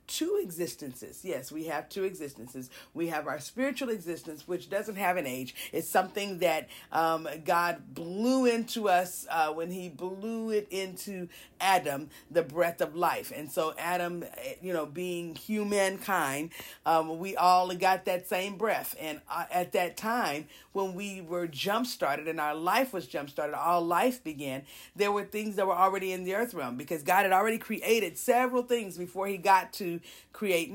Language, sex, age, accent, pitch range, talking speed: English, female, 50-69, American, 170-210 Hz, 175 wpm